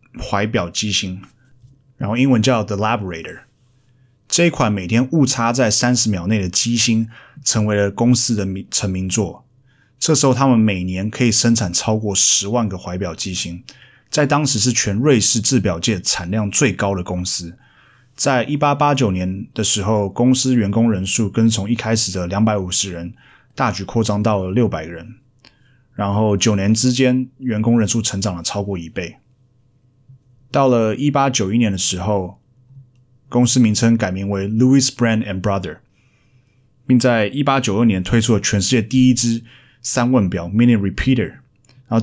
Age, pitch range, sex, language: 20-39, 100-125 Hz, male, Chinese